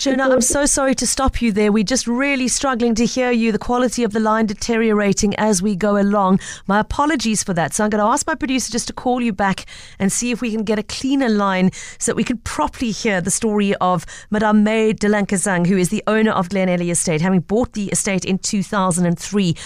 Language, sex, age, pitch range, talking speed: English, female, 40-59, 180-220 Hz, 230 wpm